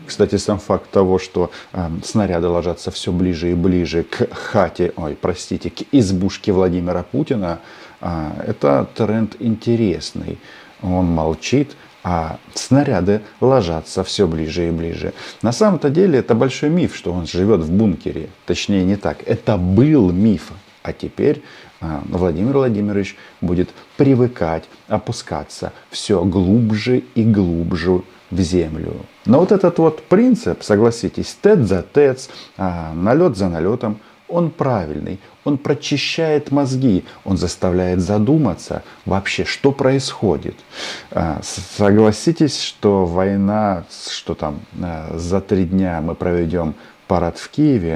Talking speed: 125 wpm